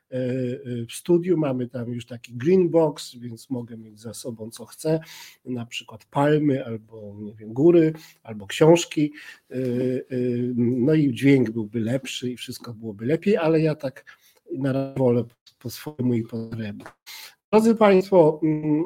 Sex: male